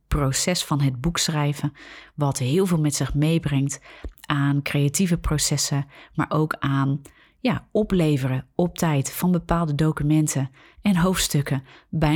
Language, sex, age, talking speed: Dutch, female, 30-49, 135 wpm